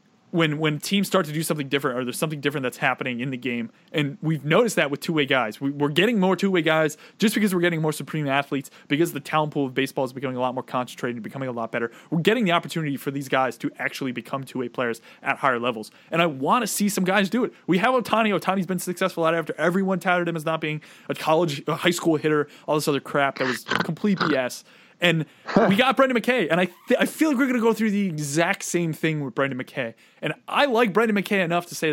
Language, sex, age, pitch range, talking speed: English, male, 20-39, 145-190 Hz, 255 wpm